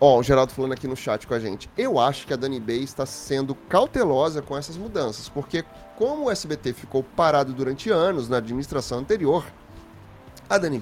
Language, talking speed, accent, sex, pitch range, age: Portuguese, 200 wpm, Brazilian, male, 130-185 Hz, 30-49